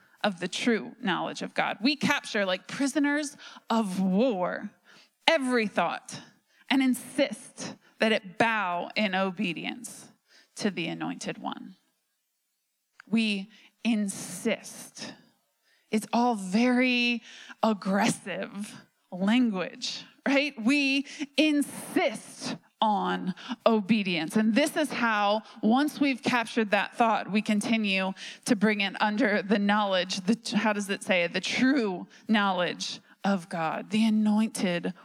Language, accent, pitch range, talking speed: English, American, 200-250 Hz, 110 wpm